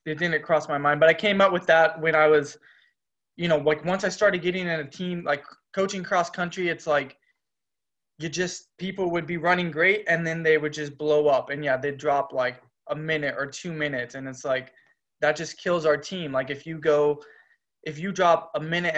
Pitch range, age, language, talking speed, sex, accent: 140-180 Hz, 20-39, English, 230 wpm, male, American